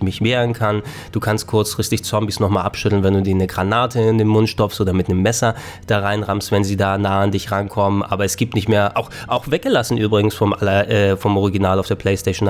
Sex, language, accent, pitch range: male, German, German, 100-115 Hz